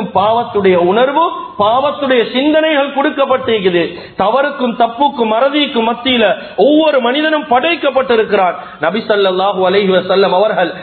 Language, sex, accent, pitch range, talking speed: English, male, Indian, 185-275 Hz, 155 wpm